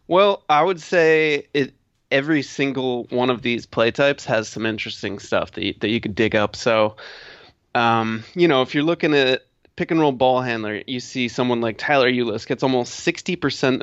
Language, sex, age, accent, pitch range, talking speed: English, male, 30-49, American, 115-135 Hz, 195 wpm